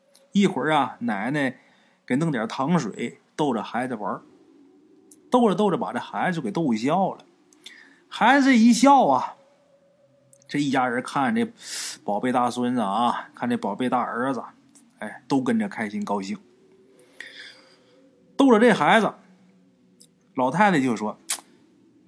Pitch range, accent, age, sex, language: 195-245 Hz, native, 20-39, male, Chinese